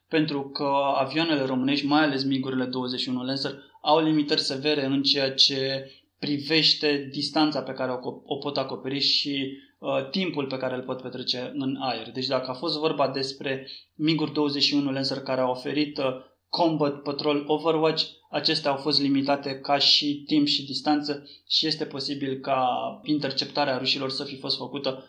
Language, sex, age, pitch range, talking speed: Romanian, male, 20-39, 135-155 Hz, 160 wpm